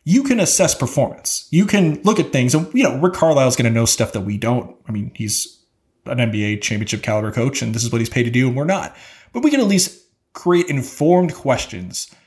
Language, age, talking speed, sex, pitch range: English, 30-49, 240 wpm, male, 115-160 Hz